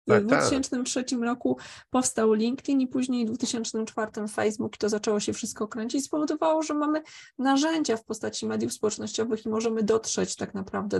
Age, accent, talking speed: 20-39, native, 165 wpm